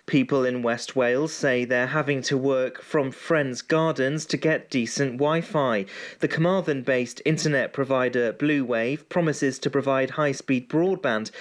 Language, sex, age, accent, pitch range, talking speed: English, male, 30-49, British, 130-160 Hz, 140 wpm